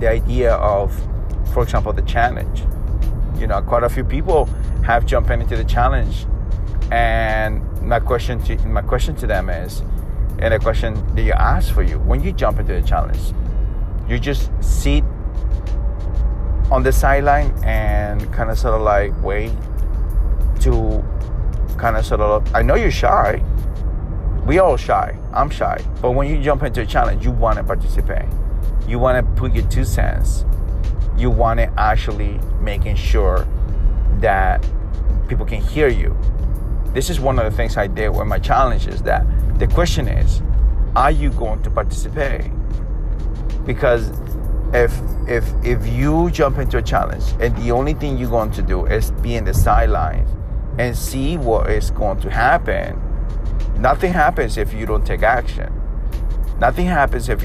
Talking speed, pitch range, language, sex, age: 165 wpm, 90-115 Hz, English, male, 30-49